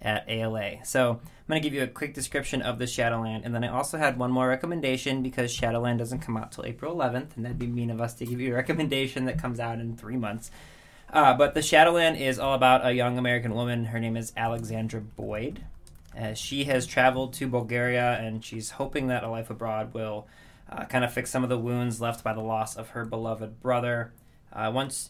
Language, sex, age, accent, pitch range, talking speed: English, male, 20-39, American, 110-130 Hz, 225 wpm